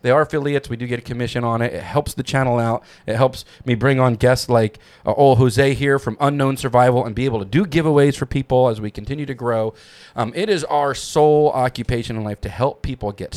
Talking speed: 245 wpm